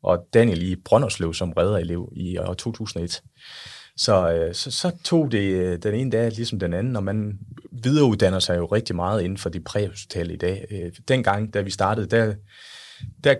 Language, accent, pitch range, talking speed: English, Danish, 90-115 Hz, 170 wpm